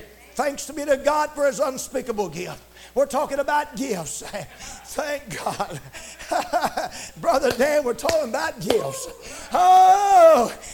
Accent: American